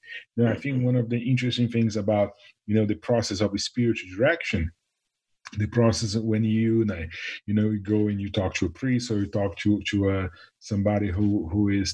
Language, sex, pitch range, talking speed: English, male, 100-120 Hz, 210 wpm